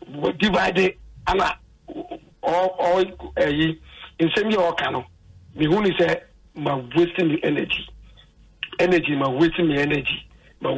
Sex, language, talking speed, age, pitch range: male, English, 130 wpm, 60-79, 155-185 Hz